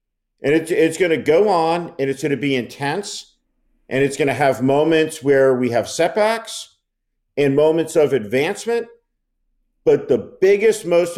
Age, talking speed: 50-69, 160 wpm